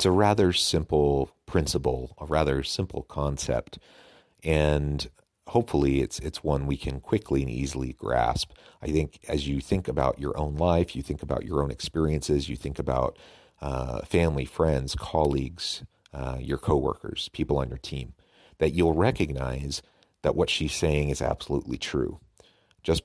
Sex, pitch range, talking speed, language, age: male, 70-80 Hz, 155 wpm, English, 40-59